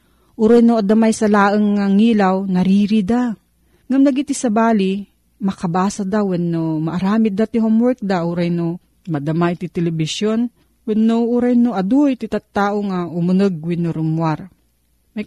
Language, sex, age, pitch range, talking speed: Filipino, female, 40-59, 170-225 Hz, 140 wpm